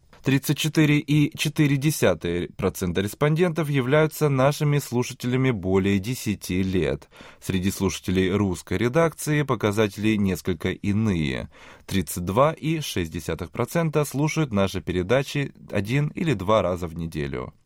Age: 20-39